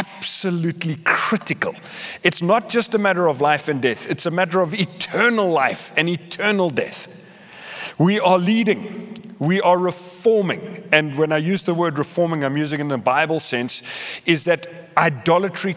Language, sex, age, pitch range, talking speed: English, male, 30-49, 140-180 Hz, 165 wpm